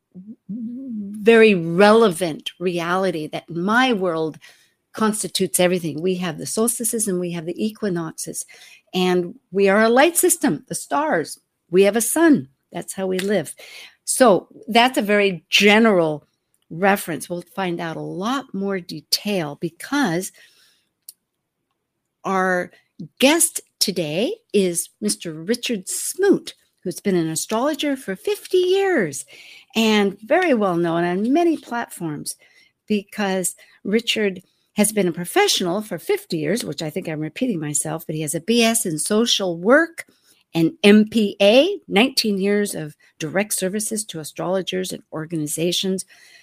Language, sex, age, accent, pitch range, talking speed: English, female, 60-79, American, 175-230 Hz, 130 wpm